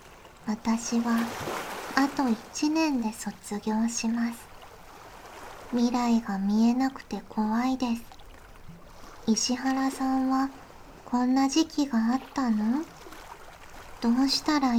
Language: Japanese